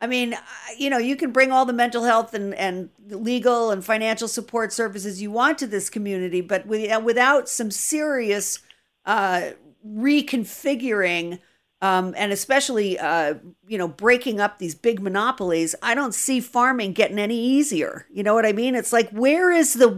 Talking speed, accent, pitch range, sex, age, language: 170 wpm, American, 195-235 Hz, female, 50-69, English